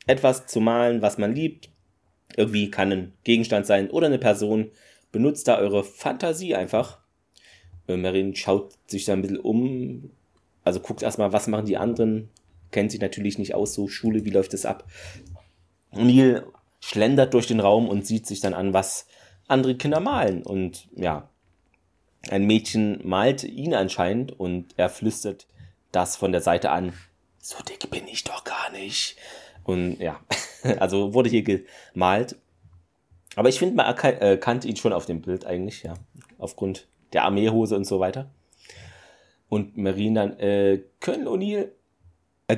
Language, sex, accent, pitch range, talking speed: German, male, German, 90-110 Hz, 155 wpm